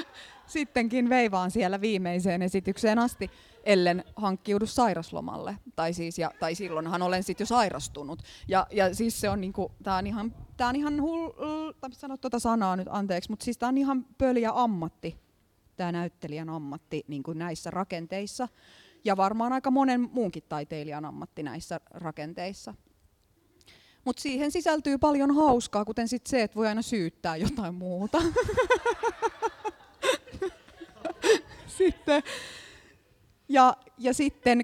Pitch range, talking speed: 165-245 Hz, 125 wpm